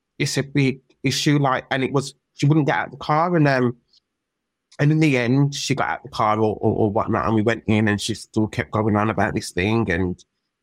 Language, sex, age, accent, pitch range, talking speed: English, male, 20-39, British, 115-155 Hz, 255 wpm